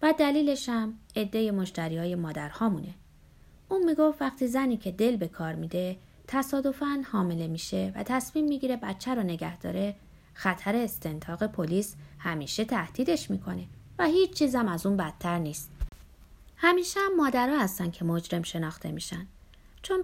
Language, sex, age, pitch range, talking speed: Persian, female, 30-49, 175-260 Hz, 145 wpm